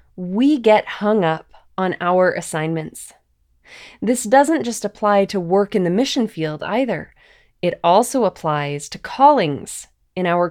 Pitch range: 170-215 Hz